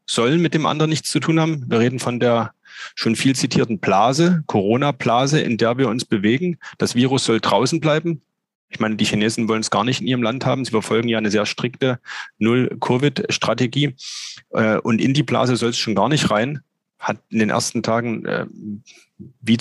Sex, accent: male, German